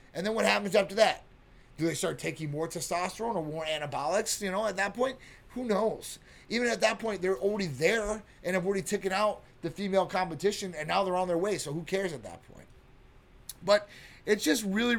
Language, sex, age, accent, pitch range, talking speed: English, male, 30-49, American, 155-205 Hz, 210 wpm